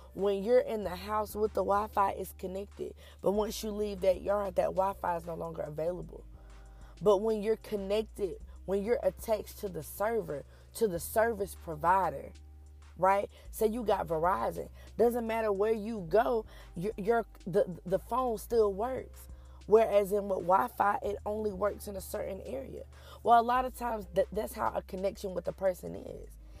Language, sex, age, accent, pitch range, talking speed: English, female, 20-39, American, 170-220 Hz, 175 wpm